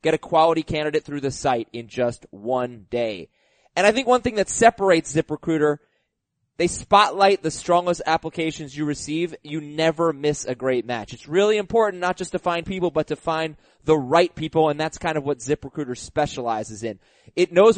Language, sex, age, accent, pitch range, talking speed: English, male, 30-49, American, 145-185 Hz, 190 wpm